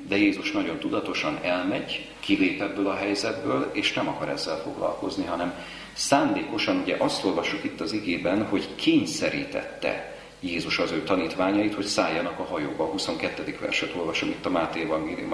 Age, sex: 40-59, male